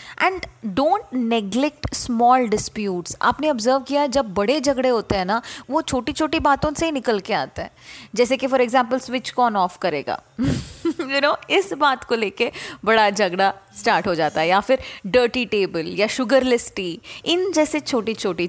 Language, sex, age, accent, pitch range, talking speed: English, female, 30-49, Indian, 215-280 Hz, 135 wpm